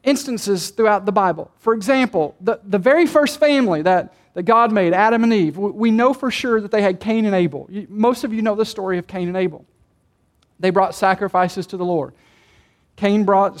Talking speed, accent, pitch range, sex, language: 205 wpm, American, 180-245 Hz, male, English